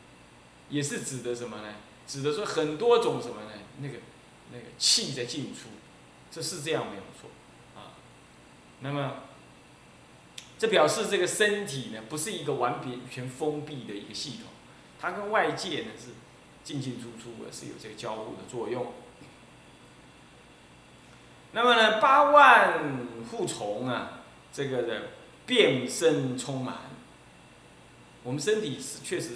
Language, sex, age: Chinese, male, 20-39